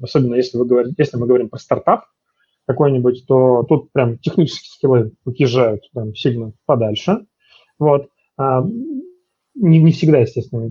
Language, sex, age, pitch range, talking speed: Russian, male, 30-49, 120-150 Hz, 130 wpm